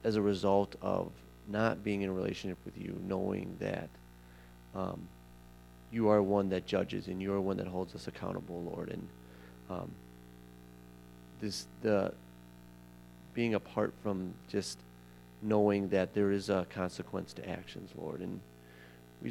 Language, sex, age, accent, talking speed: English, male, 30-49, American, 145 wpm